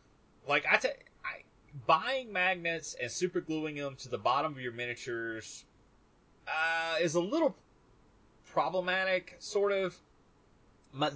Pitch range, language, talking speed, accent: 110-145 Hz, English, 125 wpm, American